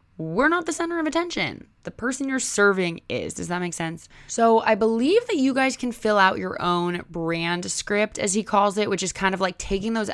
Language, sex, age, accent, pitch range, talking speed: English, female, 20-39, American, 155-200 Hz, 230 wpm